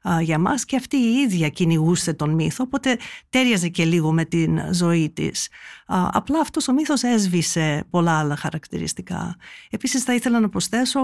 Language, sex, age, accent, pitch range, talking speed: Greek, female, 50-69, native, 165-235 Hz, 165 wpm